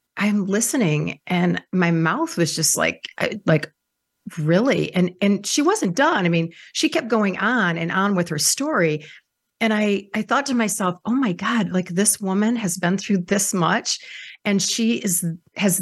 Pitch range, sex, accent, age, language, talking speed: 165-210 Hz, female, American, 40-59, English, 180 wpm